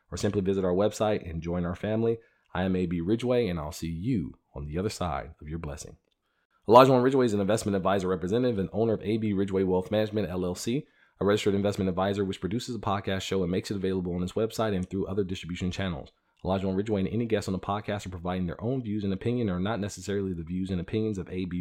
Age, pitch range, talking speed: 40-59, 90-105 Hz, 235 wpm